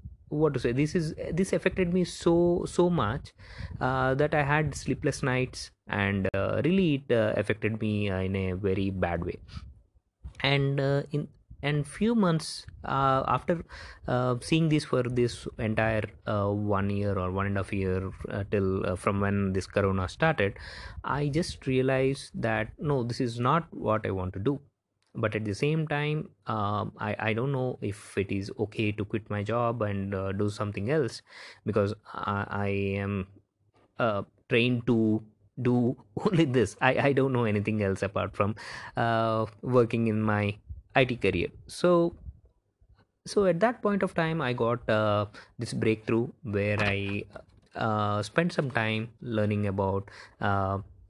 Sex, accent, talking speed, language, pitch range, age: male, Indian, 165 wpm, English, 100-135 Hz, 20-39